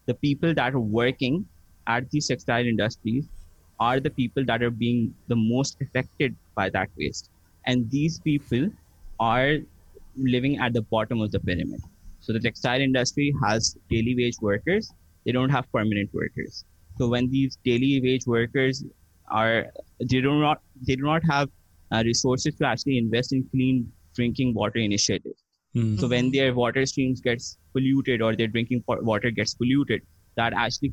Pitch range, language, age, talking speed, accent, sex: 115-135 Hz, English, 20-39, 165 wpm, Indian, male